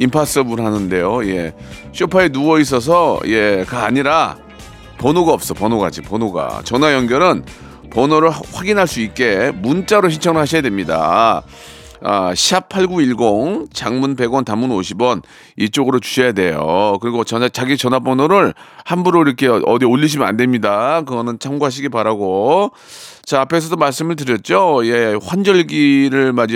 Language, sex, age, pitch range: Korean, male, 40-59, 120-155 Hz